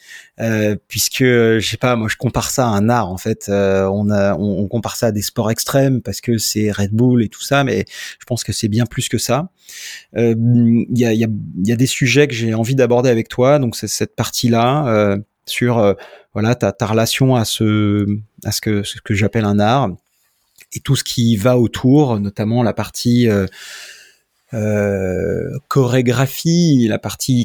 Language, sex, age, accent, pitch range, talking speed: French, male, 30-49, French, 105-125 Hz, 205 wpm